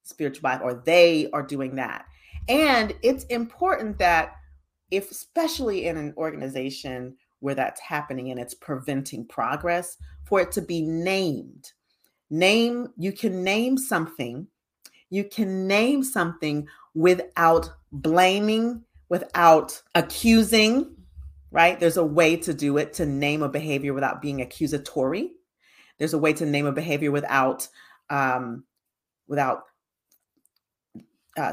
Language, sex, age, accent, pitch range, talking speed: English, female, 40-59, American, 135-185 Hz, 125 wpm